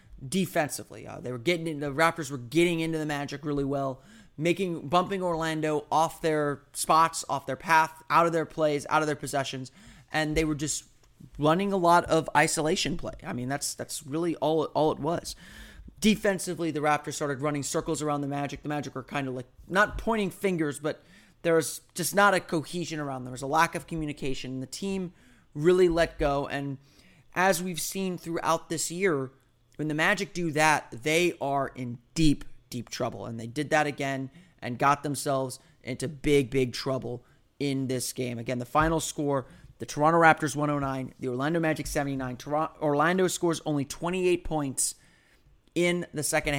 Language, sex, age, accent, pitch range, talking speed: English, male, 30-49, American, 140-170 Hz, 180 wpm